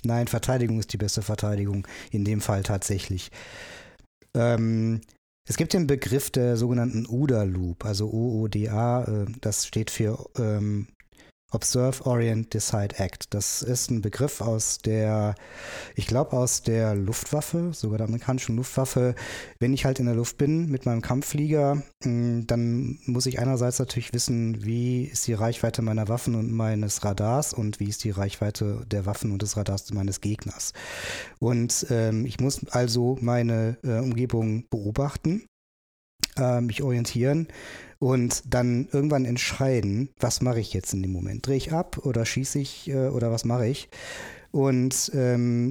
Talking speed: 150 wpm